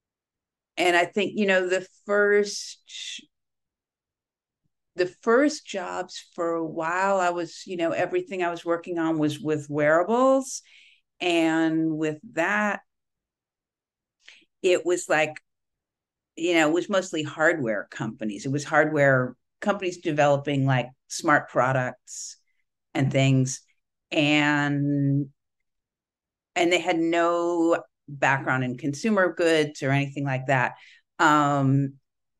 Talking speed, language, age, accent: 115 wpm, English, 50-69, American